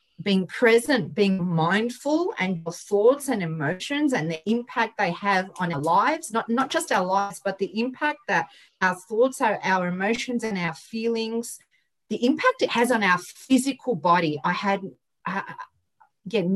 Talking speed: 165 wpm